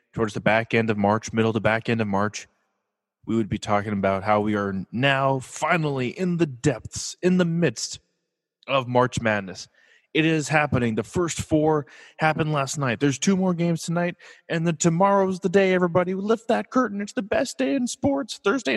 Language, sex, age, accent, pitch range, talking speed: English, male, 20-39, American, 115-175 Hz, 195 wpm